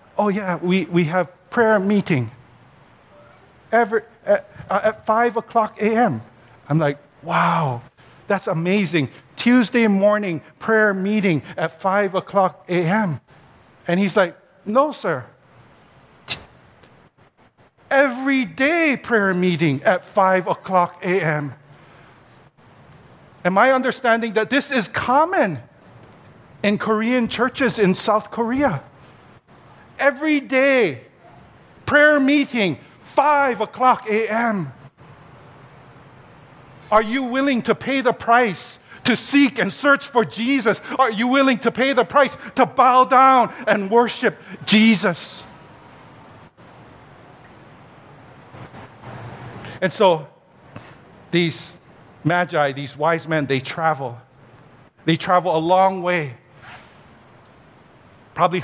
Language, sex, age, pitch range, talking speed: English, male, 50-69, 150-235 Hz, 105 wpm